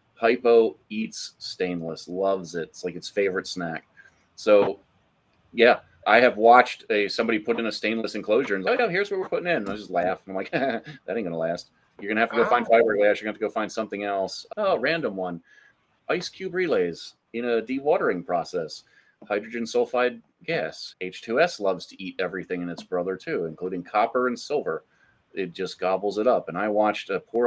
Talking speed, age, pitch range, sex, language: 210 wpm, 30-49, 95-115 Hz, male, English